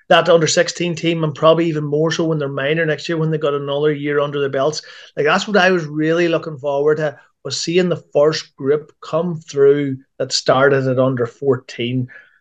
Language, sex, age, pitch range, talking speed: English, male, 30-49, 135-150 Hz, 210 wpm